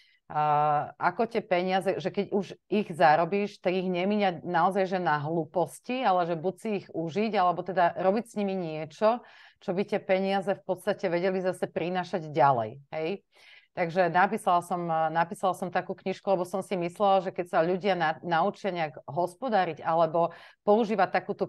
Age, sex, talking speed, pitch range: 30-49, female, 170 wpm, 165-200 Hz